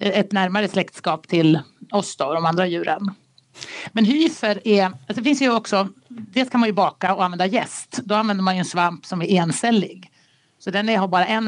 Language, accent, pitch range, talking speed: Swedish, native, 175-215 Hz, 210 wpm